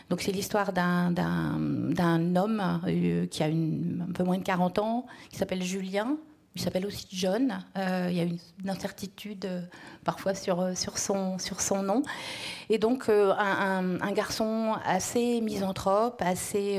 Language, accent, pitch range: French, French, 175-200 Hz